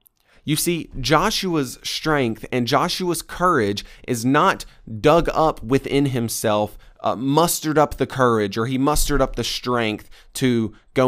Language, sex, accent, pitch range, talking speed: English, male, American, 115-150 Hz, 140 wpm